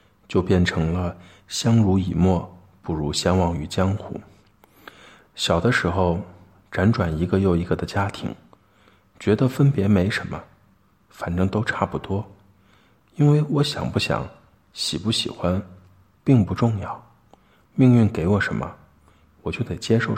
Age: 50-69